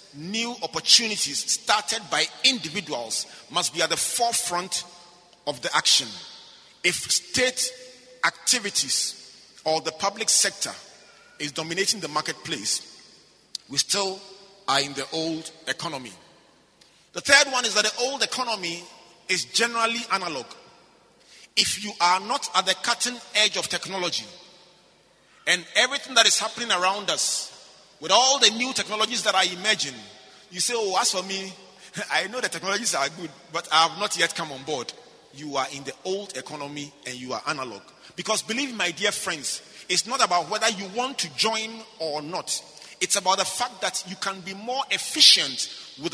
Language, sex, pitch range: English, male, 155-210 Hz